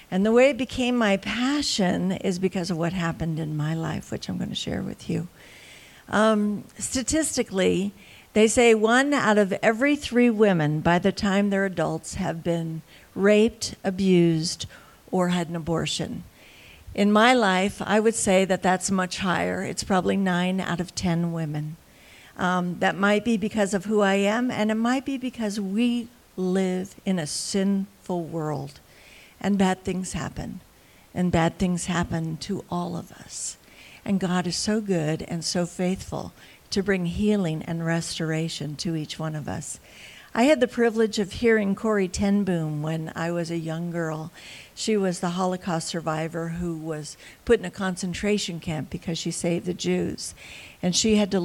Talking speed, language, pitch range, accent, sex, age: 175 wpm, English, 170-215 Hz, American, female, 60-79